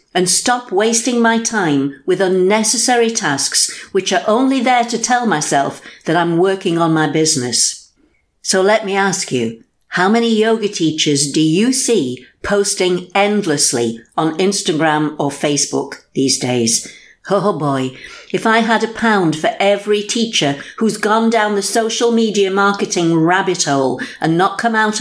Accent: British